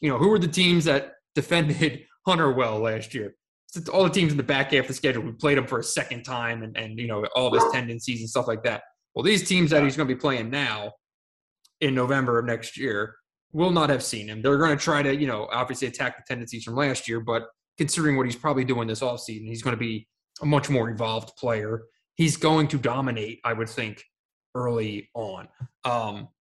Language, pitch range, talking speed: English, 120-155 Hz, 230 wpm